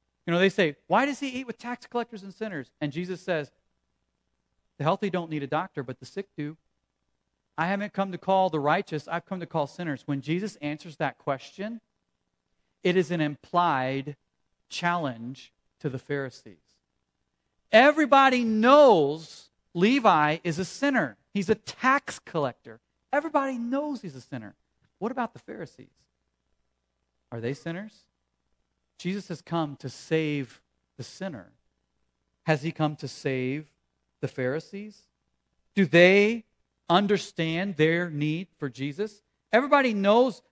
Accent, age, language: American, 40-59, English